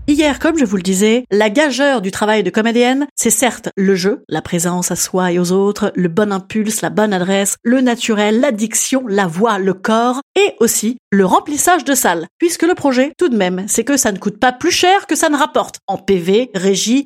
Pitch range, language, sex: 200-295 Hz, French, female